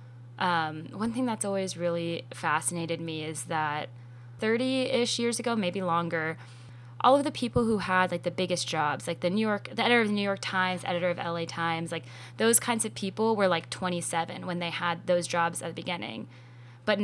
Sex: female